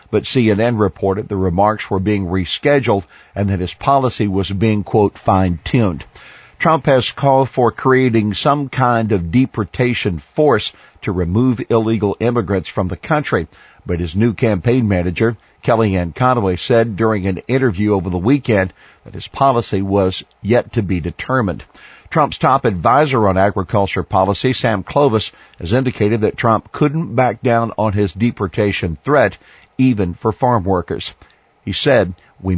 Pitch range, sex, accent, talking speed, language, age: 100-130 Hz, male, American, 150 wpm, English, 50-69